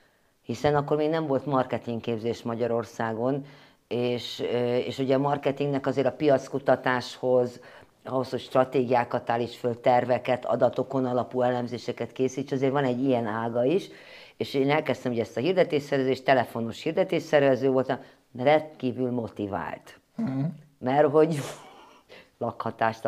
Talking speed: 125 wpm